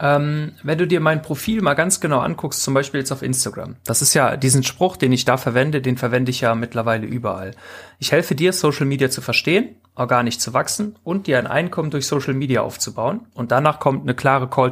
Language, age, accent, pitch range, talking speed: German, 30-49, German, 125-180 Hz, 215 wpm